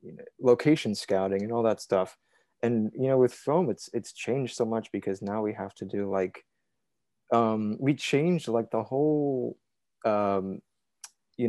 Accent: American